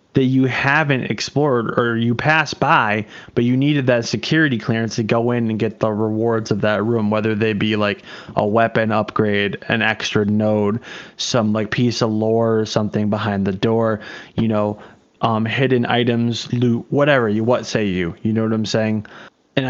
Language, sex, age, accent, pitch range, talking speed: English, male, 20-39, American, 105-125 Hz, 185 wpm